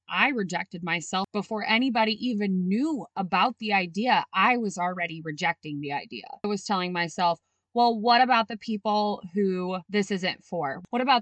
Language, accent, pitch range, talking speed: English, American, 180-220 Hz, 165 wpm